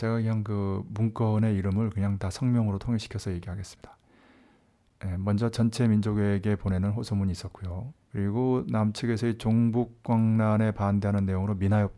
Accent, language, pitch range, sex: native, Korean, 95-115 Hz, male